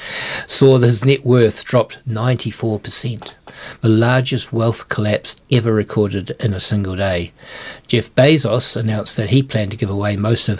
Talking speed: 160 wpm